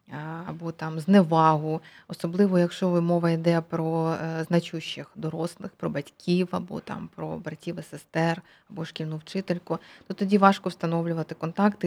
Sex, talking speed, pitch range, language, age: female, 130 wpm, 175-210 Hz, Ukrainian, 20-39